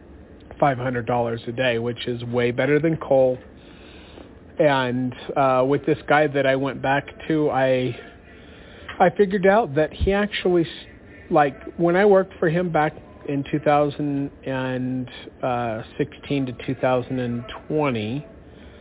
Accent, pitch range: American, 120-145 Hz